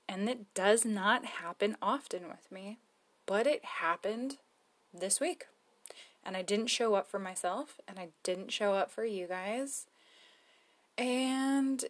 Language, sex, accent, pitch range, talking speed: English, female, American, 190-265 Hz, 145 wpm